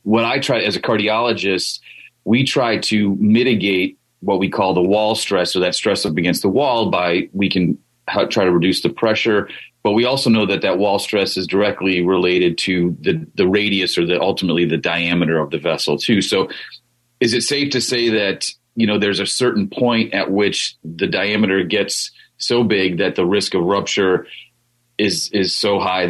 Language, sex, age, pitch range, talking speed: English, male, 30-49, 95-120 Hz, 195 wpm